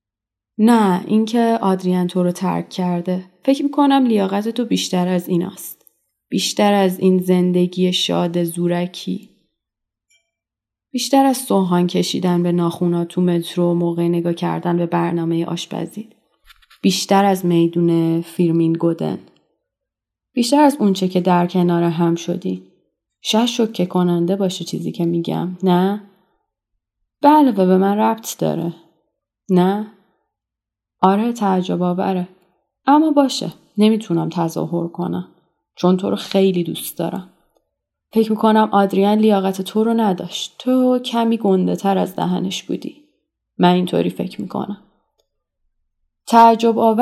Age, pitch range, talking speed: 30-49, 175-215 Hz, 125 wpm